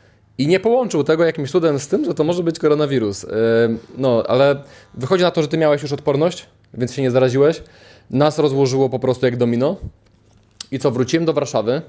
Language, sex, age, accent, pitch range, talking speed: Polish, male, 20-39, native, 120-145 Hz, 195 wpm